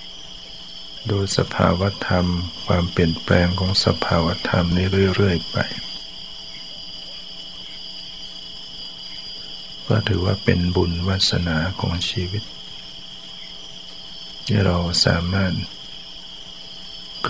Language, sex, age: Thai, male, 60-79